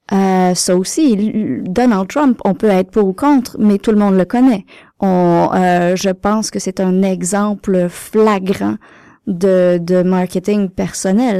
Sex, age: female, 30-49